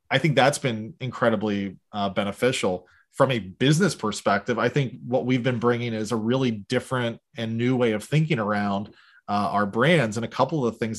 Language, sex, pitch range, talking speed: English, male, 110-130 Hz, 195 wpm